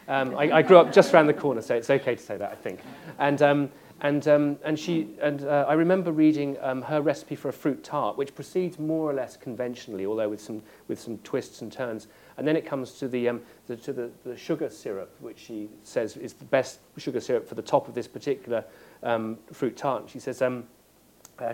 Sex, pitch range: male, 125-155 Hz